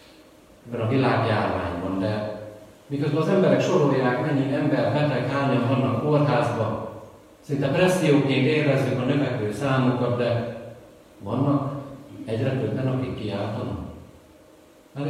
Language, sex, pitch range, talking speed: Hungarian, male, 105-140 Hz, 110 wpm